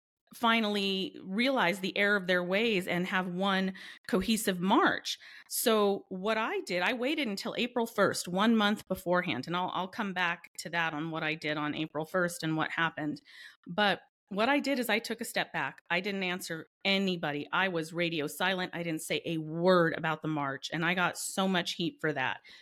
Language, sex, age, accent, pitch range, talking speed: English, female, 40-59, American, 170-225 Hz, 200 wpm